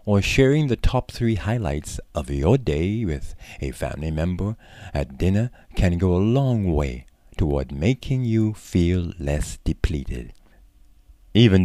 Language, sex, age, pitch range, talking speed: English, male, 60-79, 75-110 Hz, 140 wpm